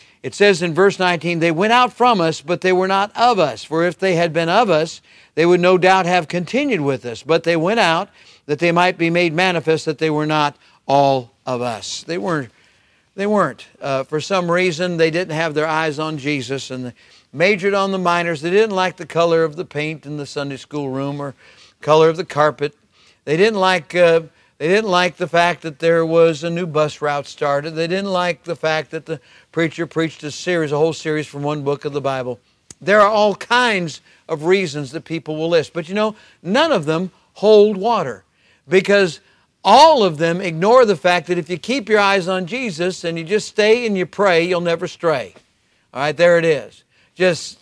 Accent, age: American, 50-69